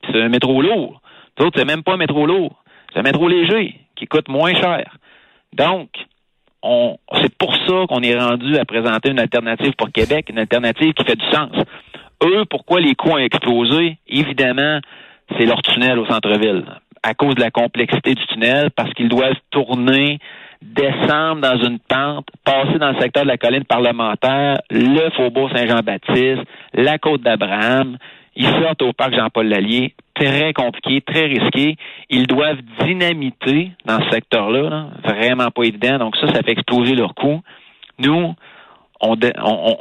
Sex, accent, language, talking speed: male, Canadian, French, 165 wpm